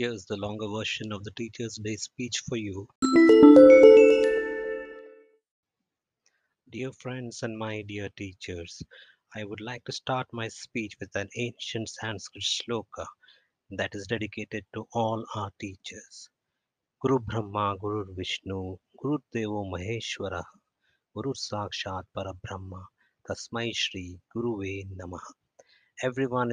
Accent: Indian